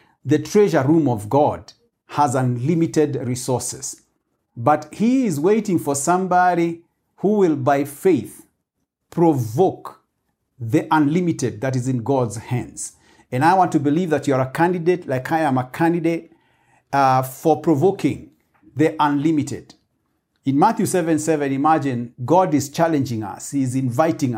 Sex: male